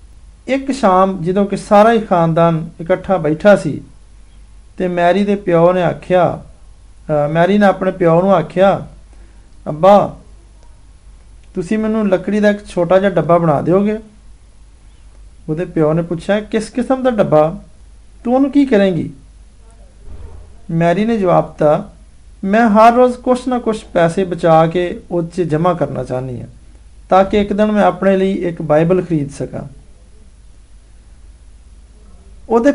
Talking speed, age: 125 wpm, 50-69